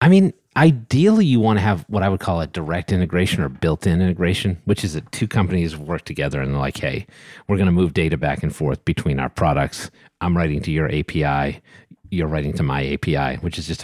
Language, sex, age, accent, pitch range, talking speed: English, male, 30-49, American, 75-100 Hz, 225 wpm